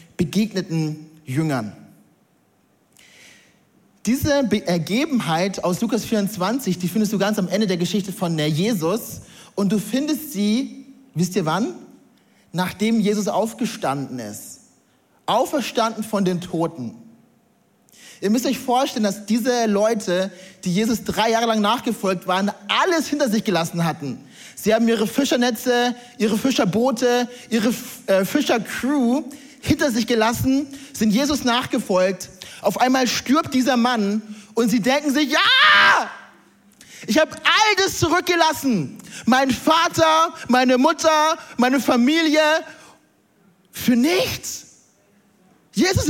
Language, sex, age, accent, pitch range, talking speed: German, male, 30-49, German, 200-275 Hz, 115 wpm